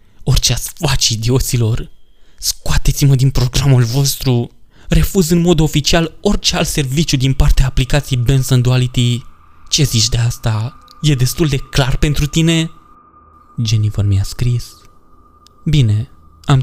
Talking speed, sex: 125 wpm, male